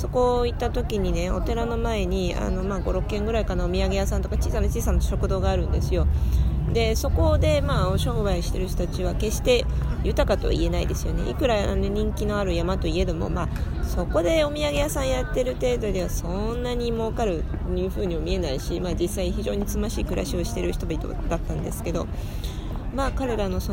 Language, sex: Japanese, female